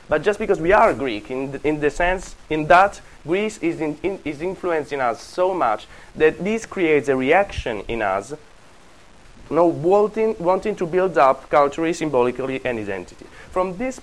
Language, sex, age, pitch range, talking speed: English, male, 30-49, 120-180 Hz, 180 wpm